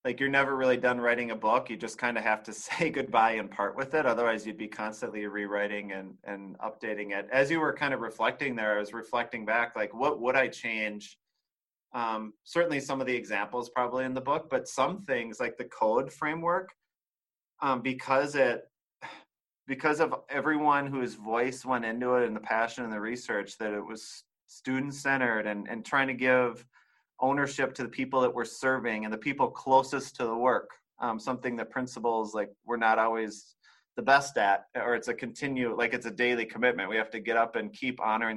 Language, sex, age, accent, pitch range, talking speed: English, male, 30-49, American, 110-130 Hz, 205 wpm